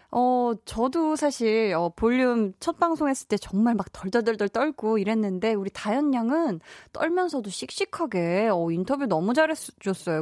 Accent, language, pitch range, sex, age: native, Korean, 185-270 Hz, female, 20-39